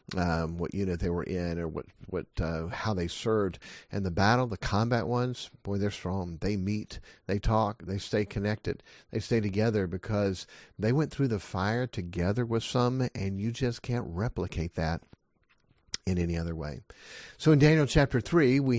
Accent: American